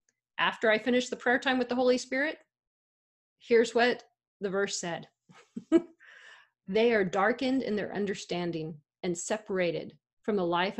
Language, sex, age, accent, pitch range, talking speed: English, female, 40-59, American, 180-225 Hz, 145 wpm